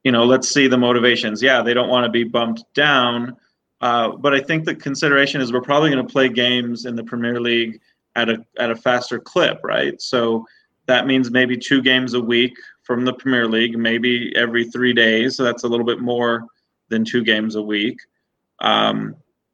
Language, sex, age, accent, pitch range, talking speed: English, male, 20-39, American, 115-125 Hz, 205 wpm